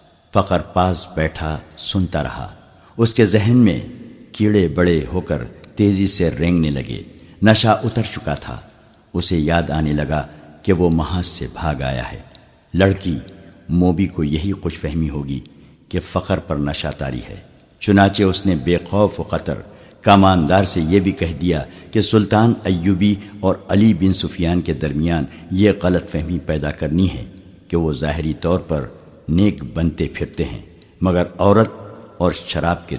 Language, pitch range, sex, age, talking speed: Urdu, 80-100 Hz, male, 60-79, 160 wpm